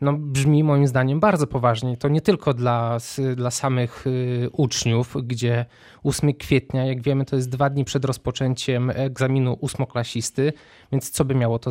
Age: 20-39